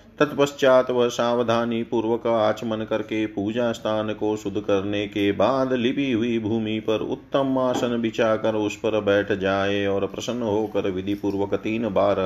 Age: 30-49